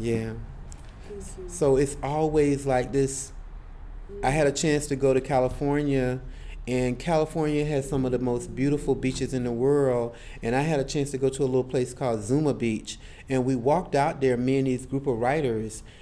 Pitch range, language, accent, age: 125-160 Hz, English, American, 30-49